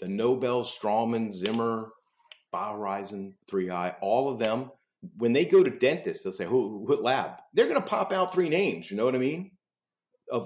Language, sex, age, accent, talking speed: English, male, 50-69, American, 195 wpm